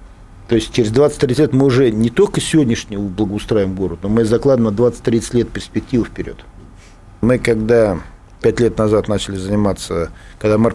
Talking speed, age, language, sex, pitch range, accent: 160 wpm, 50-69, Russian, male, 95-135 Hz, native